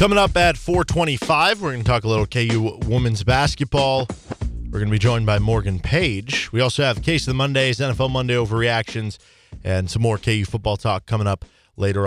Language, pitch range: English, 110-140 Hz